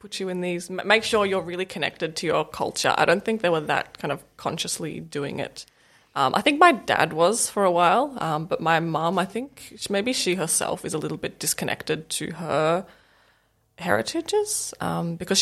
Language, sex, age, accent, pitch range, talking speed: English, female, 20-39, Australian, 160-195 Hz, 200 wpm